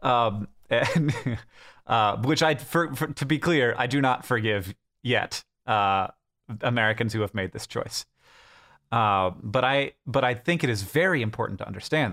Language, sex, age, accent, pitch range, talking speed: English, male, 30-49, American, 110-135 Hz, 175 wpm